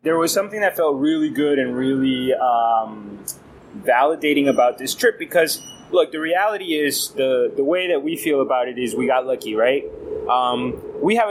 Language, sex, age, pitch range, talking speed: English, male, 20-39, 140-185 Hz, 185 wpm